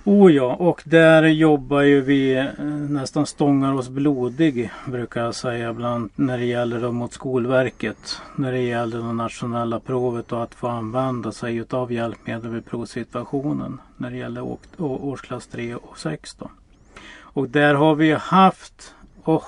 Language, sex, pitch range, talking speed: Swedish, male, 120-145 Hz, 155 wpm